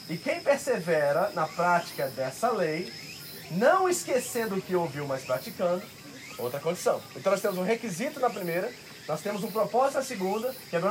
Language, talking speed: Portuguese, 170 wpm